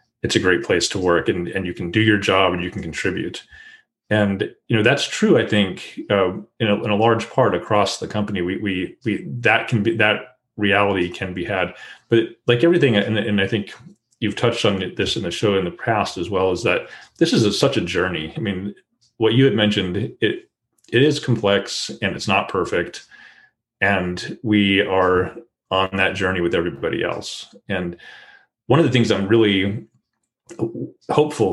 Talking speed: 195 wpm